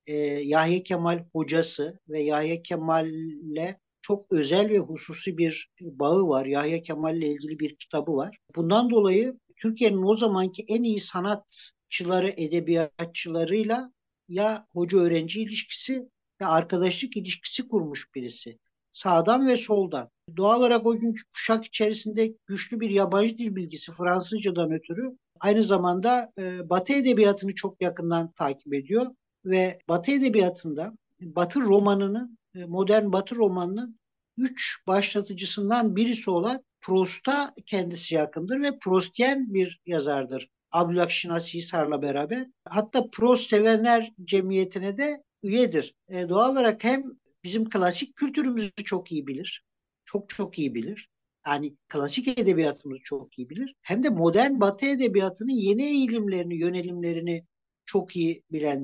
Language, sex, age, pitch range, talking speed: English, male, 60-79, 165-225 Hz, 120 wpm